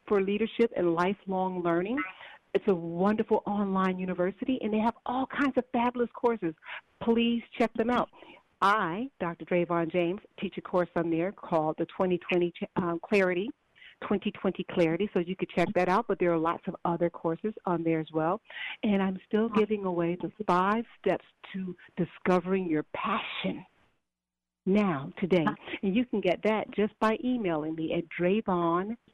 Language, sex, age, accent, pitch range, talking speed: English, female, 40-59, American, 175-215 Hz, 165 wpm